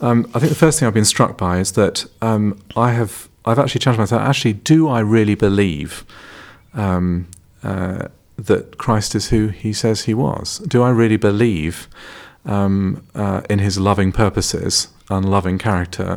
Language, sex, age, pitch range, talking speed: English, male, 40-59, 95-120 Hz, 170 wpm